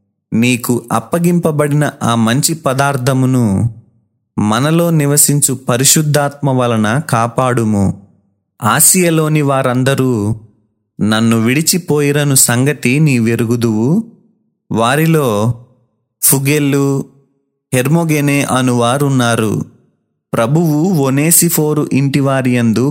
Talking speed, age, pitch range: 65 wpm, 30-49, 115-150 Hz